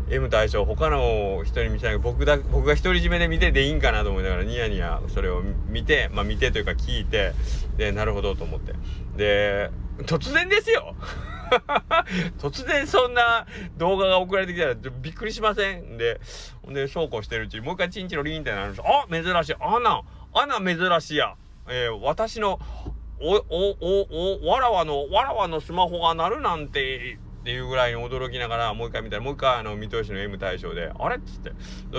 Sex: male